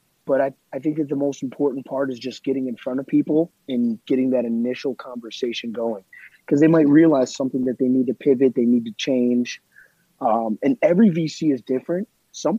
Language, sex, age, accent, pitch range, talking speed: English, male, 30-49, American, 130-150 Hz, 205 wpm